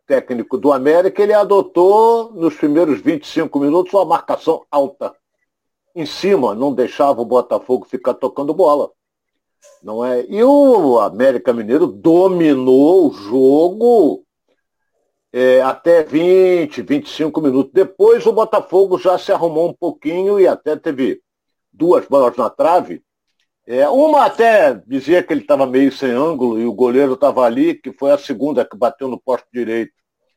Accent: Brazilian